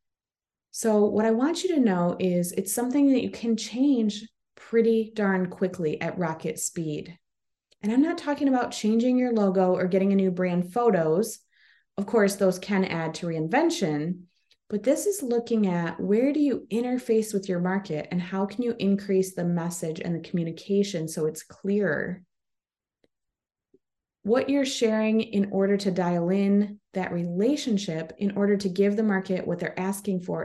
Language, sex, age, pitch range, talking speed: English, female, 20-39, 185-230 Hz, 170 wpm